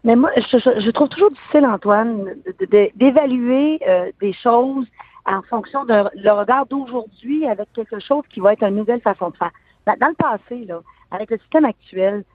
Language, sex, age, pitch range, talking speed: French, female, 50-69, 195-275 Hz, 195 wpm